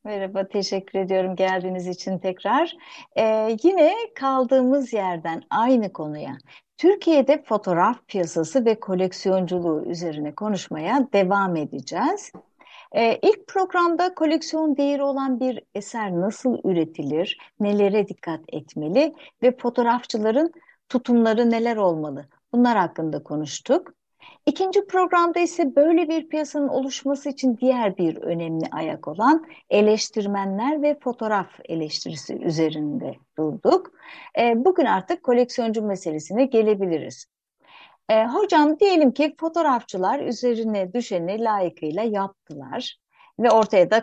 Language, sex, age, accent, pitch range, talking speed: Turkish, female, 60-79, native, 185-285 Hz, 105 wpm